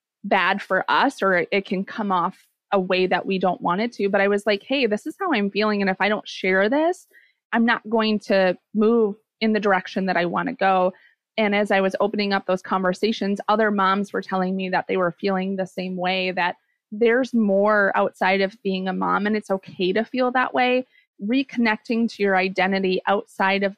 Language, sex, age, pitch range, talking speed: English, female, 30-49, 190-225 Hz, 215 wpm